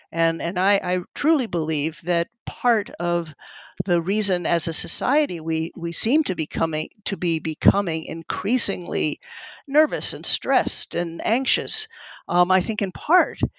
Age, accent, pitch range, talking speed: 50-69, American, 175-220 Hz, 150 wpm